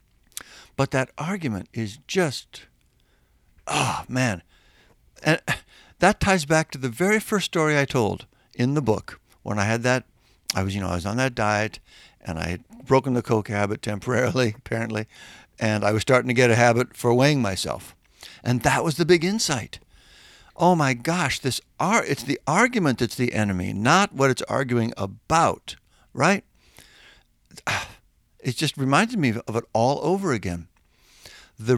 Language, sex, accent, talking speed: English, male, American, 165 wpm